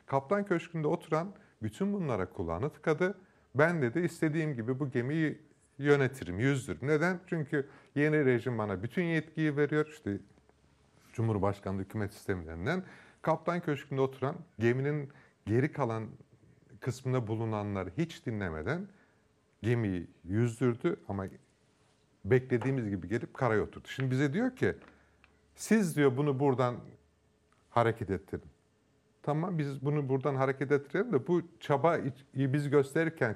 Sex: male